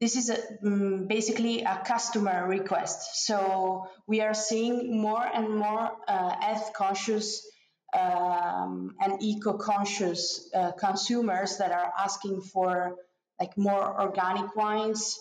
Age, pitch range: 30-49, 195-225 Hz